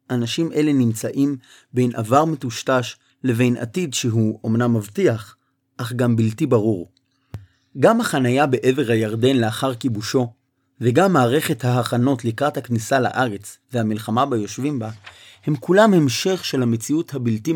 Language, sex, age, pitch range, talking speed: Hebrew, male, 30-49, 115-140 Hz, 125 wpm